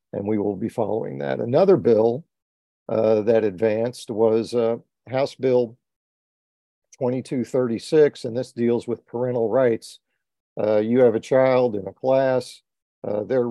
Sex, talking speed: male, 145 wpm